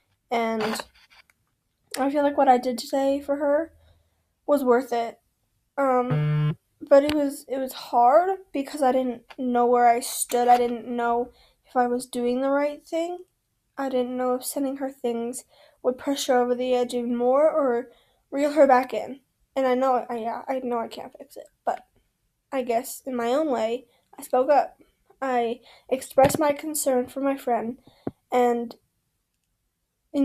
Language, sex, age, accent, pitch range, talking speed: English, female, 10-29, American, 245-280 Hz, 175 wpm